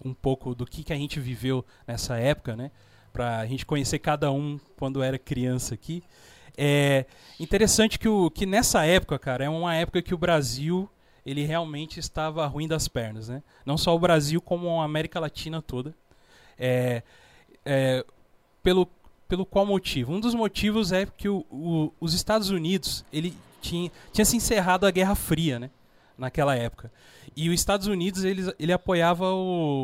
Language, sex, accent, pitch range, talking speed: Portuguese, male, Brazilian, 140-190 Hz, 175 wpm